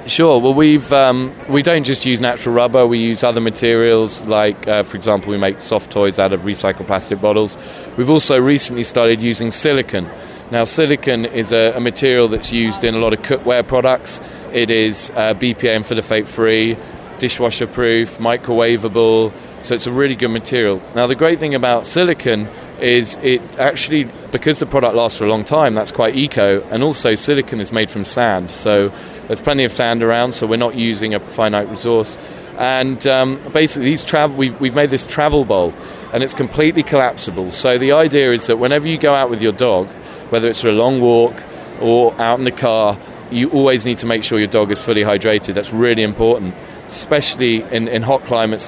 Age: 20-39